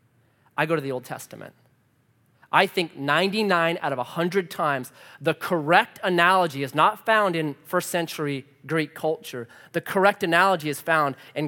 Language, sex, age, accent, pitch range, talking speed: English, male, 30-49, American, 130-215 Hz, 155 wpm